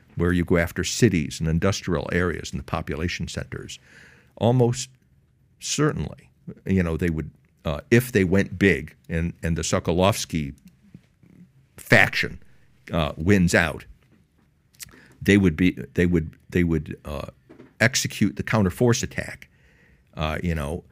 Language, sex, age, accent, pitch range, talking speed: English, male, 60-79, American, 85-105 Hz, 130 wpm